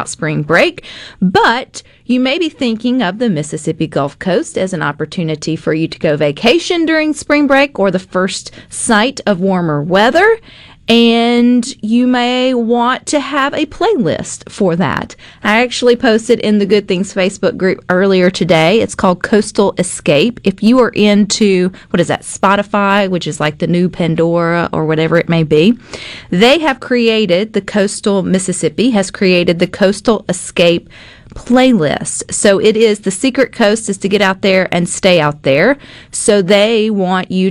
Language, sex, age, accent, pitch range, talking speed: English, female, 40-59, American, 175-235 Hz, 170 wpm